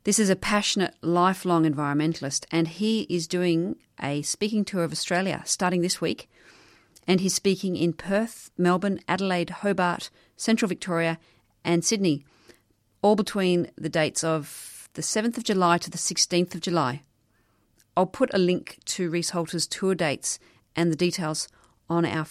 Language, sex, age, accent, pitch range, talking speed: English, female, 40-59, Australian, 155-185 Hz, 155 wpm